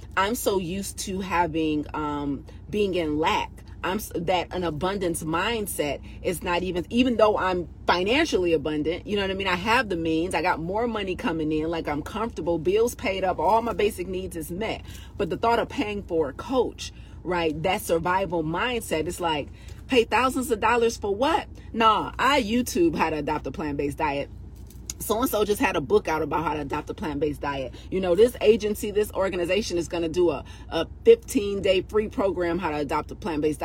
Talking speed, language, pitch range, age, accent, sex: 200 wpm, English, 160-205 Hz, 30-49, American, female